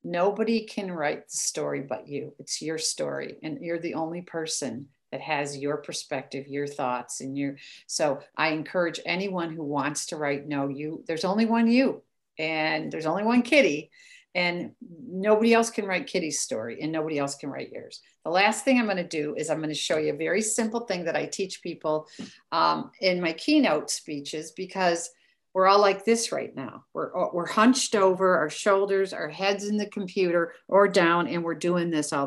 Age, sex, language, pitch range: 50-69, female, English, 170-230 Hz